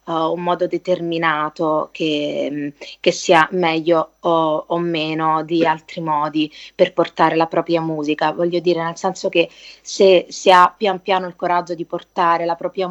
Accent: native